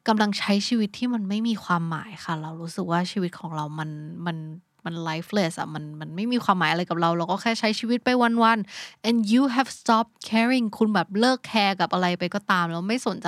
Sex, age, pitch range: female, 20-39, 175-225 Hz